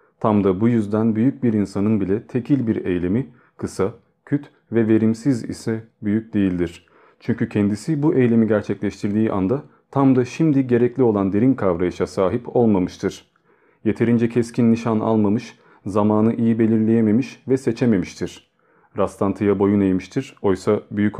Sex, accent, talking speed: male, native, 135 wpm